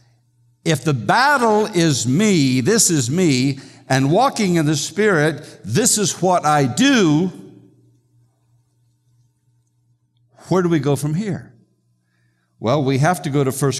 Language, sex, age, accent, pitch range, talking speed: English, male, 60-79, American, 115-155 Hz, 135 wpm